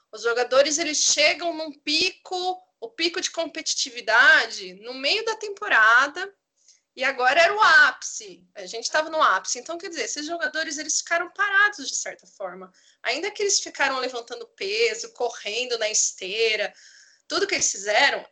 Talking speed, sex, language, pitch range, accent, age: 155 wpm, female, Portuguese, 240-375 Hz, Brazilian, 20-39